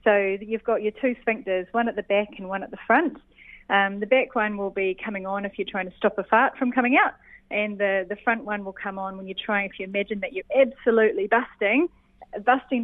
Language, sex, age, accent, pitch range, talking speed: English, female, 30-49, Australian, 200-250 Hz, 245 wpm